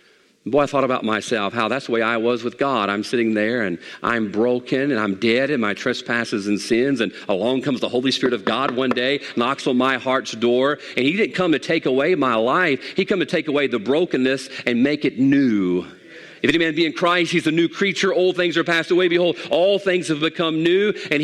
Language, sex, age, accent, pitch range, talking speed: English, male, 40-59, American, 135-225 Hz, 235 wpm